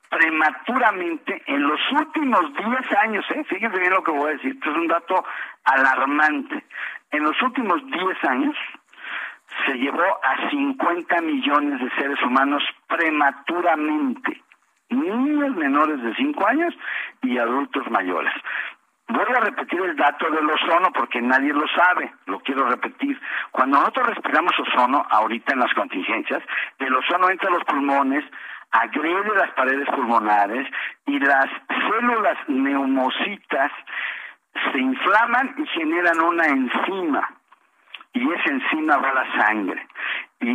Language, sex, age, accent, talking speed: Spanish, male, 50-69, Mexican, 135 wpm